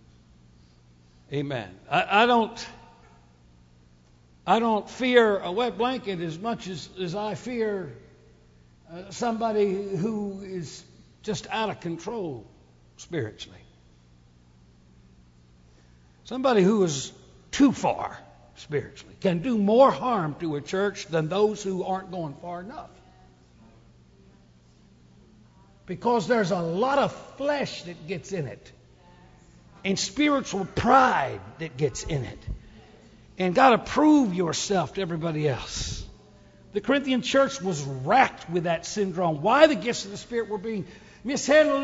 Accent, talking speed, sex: American, 125 wpm, male